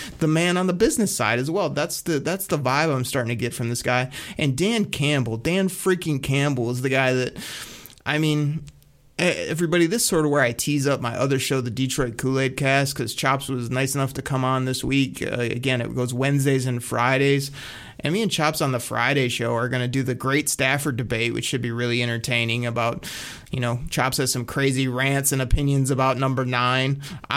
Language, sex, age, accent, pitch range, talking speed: English, male, 30-49, American, 130-160 Hz, 215 wpm